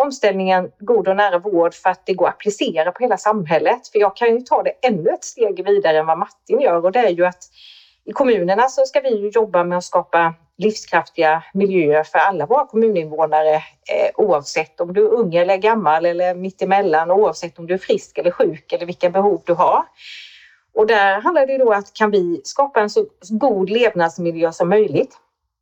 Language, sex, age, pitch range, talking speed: Swedish, female, 30-49, 170-245 Hz, 200 wpm